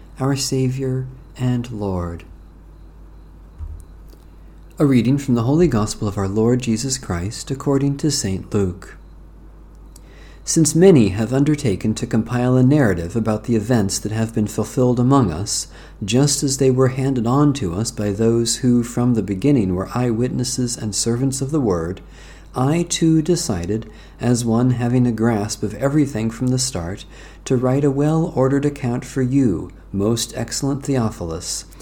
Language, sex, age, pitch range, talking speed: English, male, 50-69, 95-130 Hz, 150 wpm